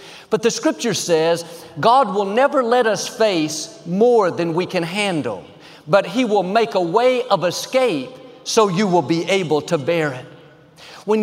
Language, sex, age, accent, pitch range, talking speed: English, male, 50-69, American, 170-230 Hz, 170 wpm